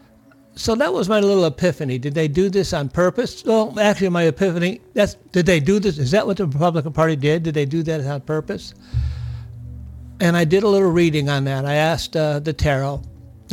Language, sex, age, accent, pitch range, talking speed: English, male, 60-79, American, 140-175 Hz, 210 wpm